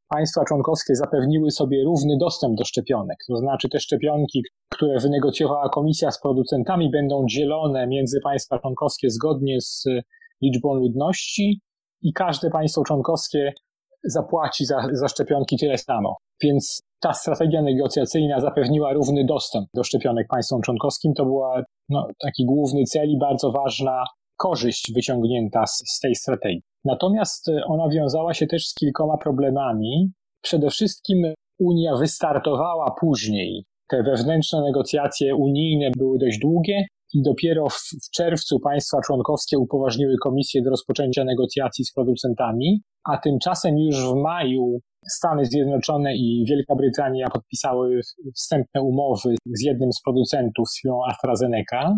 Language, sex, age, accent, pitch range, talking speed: Polish, male, 30-49, native, 130-155 Hz, 135 wpm